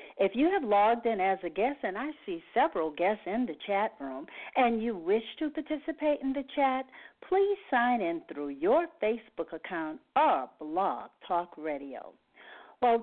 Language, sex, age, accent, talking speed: English, female, 50-69, American, 170 wpm